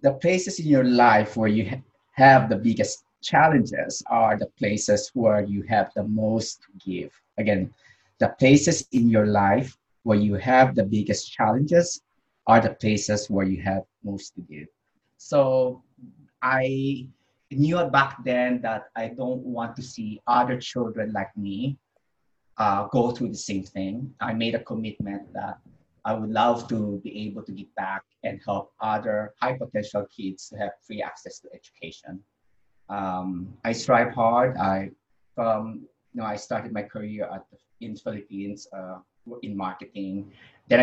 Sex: male